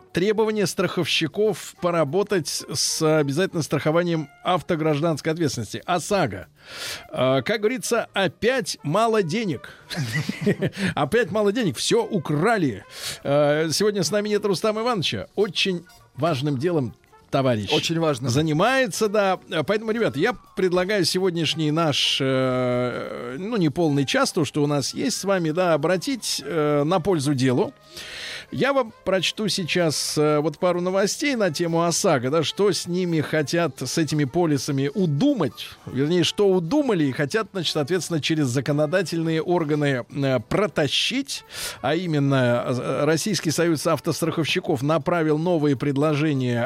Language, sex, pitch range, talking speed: Russian, male, 150-200 Hz, 125 wpm